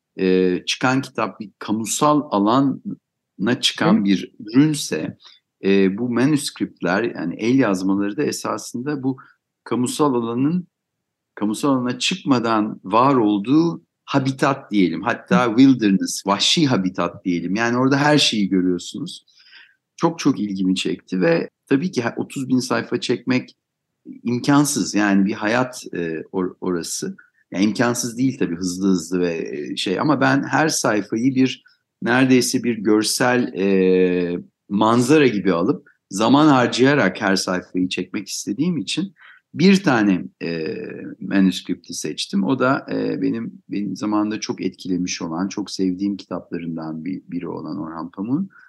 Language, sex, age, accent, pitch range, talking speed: Turkish, male, 60-79, native, 95-130 Hz, 125 wpm